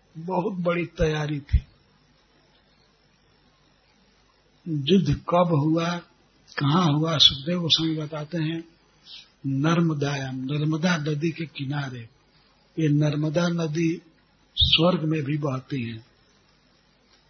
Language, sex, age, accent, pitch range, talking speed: Hindi, male, 60-79, native, 145-170 Hz, 95 wpm